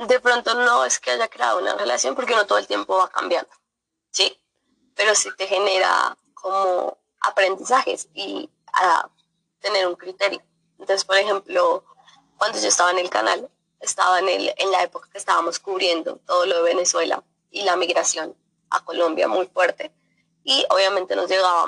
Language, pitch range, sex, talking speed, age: Spanish, 170-205 Hz, female, 170 wpm, 20-39